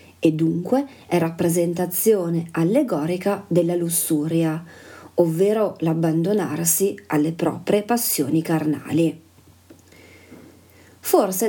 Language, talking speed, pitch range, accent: Italian, 75 wpm, 165-200 Hz, native